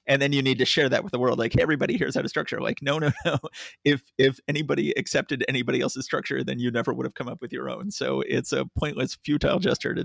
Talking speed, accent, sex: 270 wpm, American, male